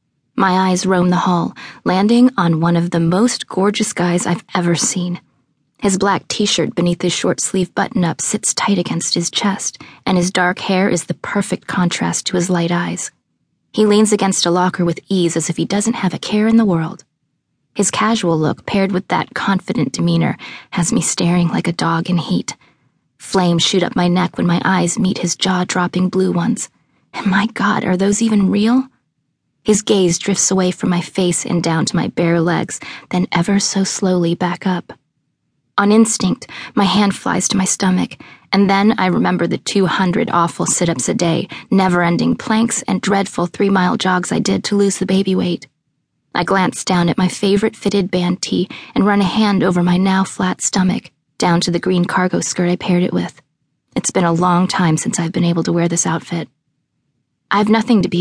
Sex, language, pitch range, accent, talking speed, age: female, English, 175-200 Hz, American, 195 wpm, 20-39